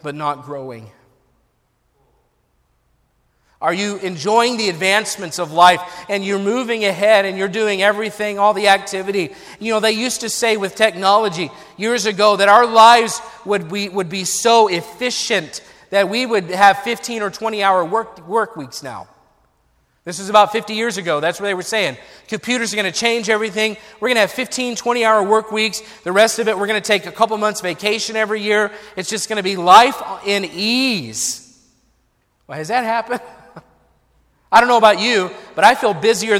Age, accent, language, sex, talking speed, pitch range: 40-59, American, English, male, 185 wpm, 185-230 Hz